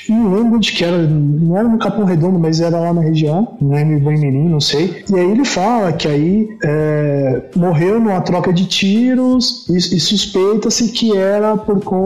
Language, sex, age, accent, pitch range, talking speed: Portuguese, male, 20-39, Brazilian, 155-200 Hz, 185 wpm